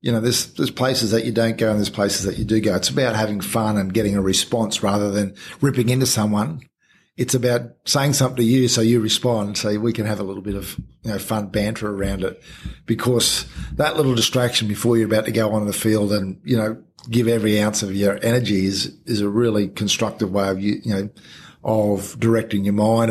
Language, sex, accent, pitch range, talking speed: English, male, Australian, 105-120 Hz, 230 wpm